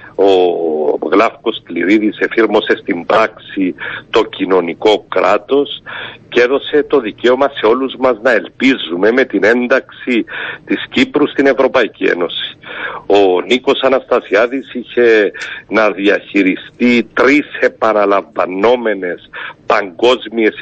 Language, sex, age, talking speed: Greek, male, 60-79, 100 wpm